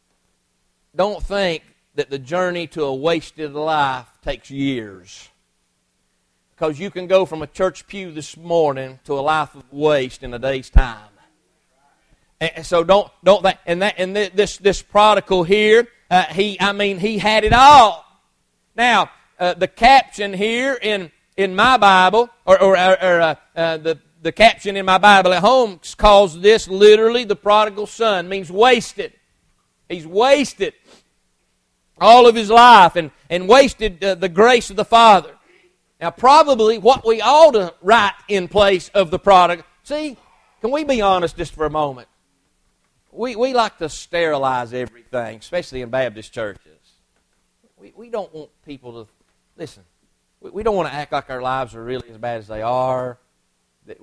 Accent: American